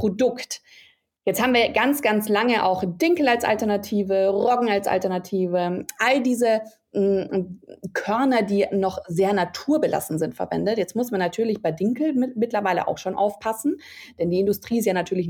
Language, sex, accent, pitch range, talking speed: German, female, German, 180-225 Hz, 155 wpm